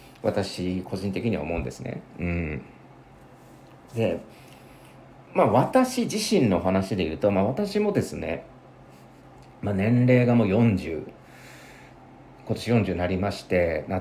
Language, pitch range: Japanese, 95-135 Hz